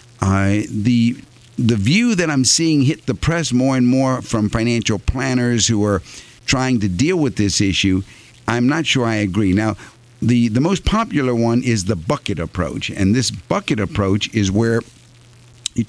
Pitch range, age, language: 105-125 Hz, 50-69, English